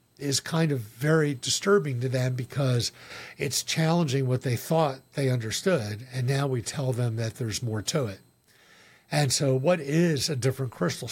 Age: 50-69